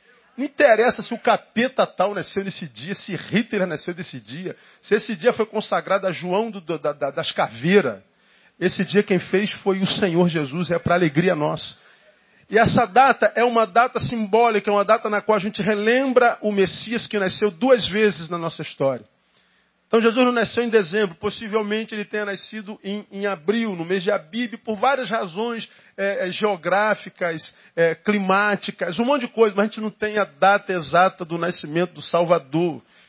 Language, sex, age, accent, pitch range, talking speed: Portuguese, male, 40-59, Brazilian, 185-225 Hz, 185 wpm